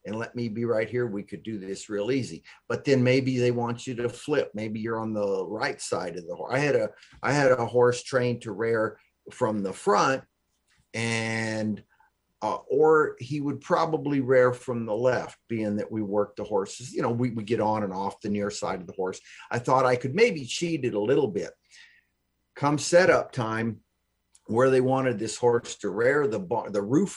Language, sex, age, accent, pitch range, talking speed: English, male, 50-69, American, 105-135 Hz, 215 wpm